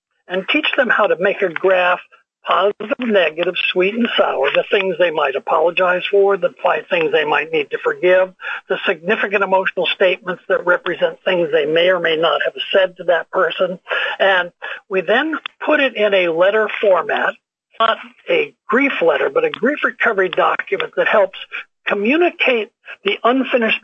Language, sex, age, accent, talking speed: English, male, 60-79, American, 165 wpm